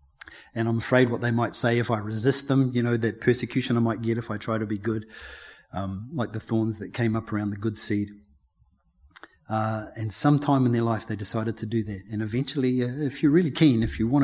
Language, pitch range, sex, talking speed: English, 105-125 Hz, male, 245 wpm